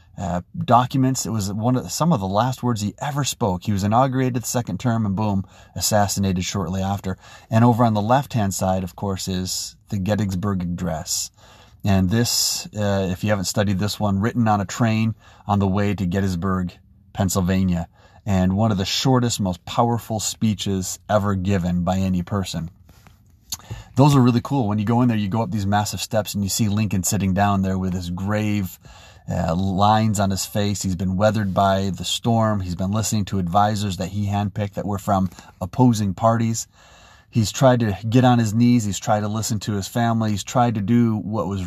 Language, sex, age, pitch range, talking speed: English, male, 30-49, 95-110 Hz, 200 wpm